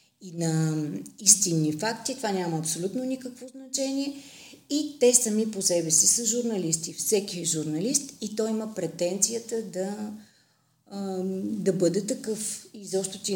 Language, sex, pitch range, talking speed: Bulgarian, female, 170-210 Hz, 140 wpm